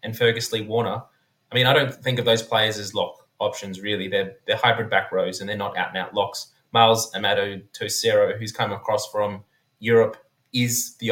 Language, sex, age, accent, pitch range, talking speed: English, male, 20-39, Australian, 105-120 Hz, 200 wpm